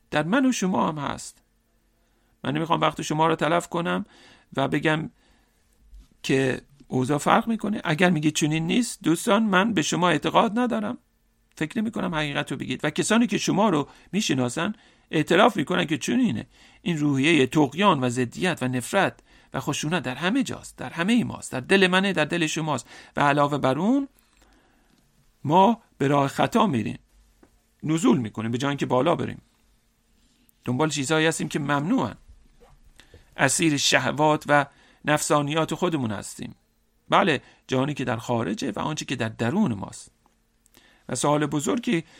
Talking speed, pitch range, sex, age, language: 155 wpm, 135-190 Hz, male, 50-69, English